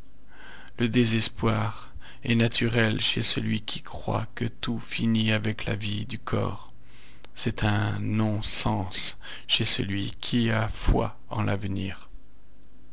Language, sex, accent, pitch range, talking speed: French, male, French, 105-120 Hz, 120 wpm